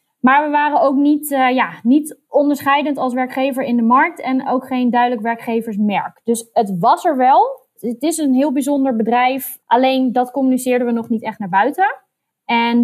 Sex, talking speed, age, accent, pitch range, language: female, 180 wpm, 20-39, Dutch, 200-250 Hz, Dutch